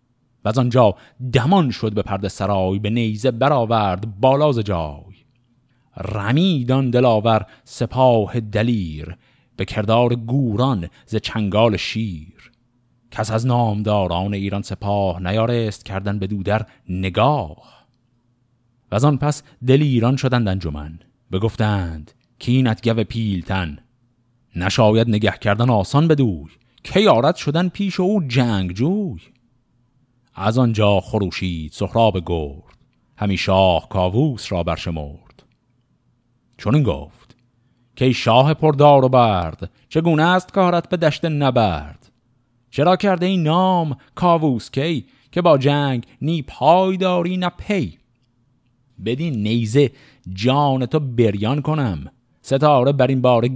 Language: Persian